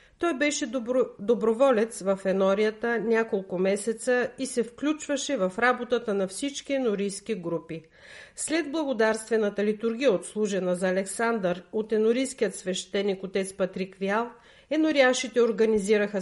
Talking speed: 110 wpm